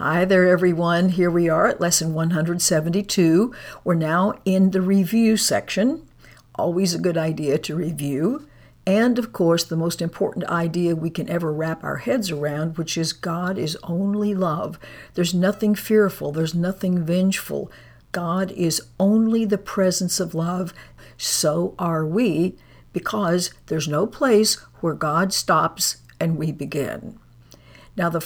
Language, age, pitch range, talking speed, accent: English, 60-79, 160-195 Hz, 145 wpm, American